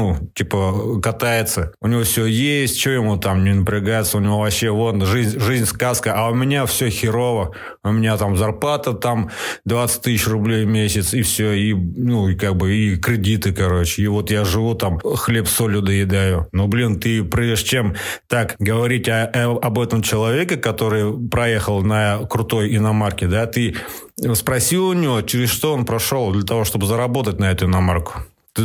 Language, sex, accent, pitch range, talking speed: Russian, male, native, 105-120 Hz, 180 wpm